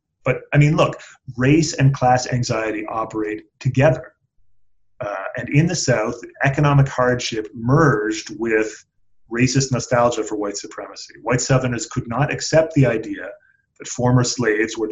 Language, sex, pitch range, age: English, male, 110-140 Hz, 30-49